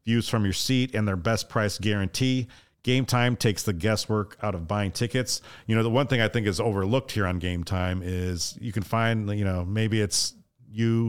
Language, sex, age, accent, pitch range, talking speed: English, male, 40-59, American, 100-125 Hz, 215 wpm